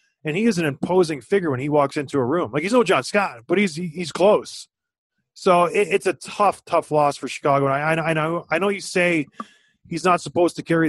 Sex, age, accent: male, 30-49, American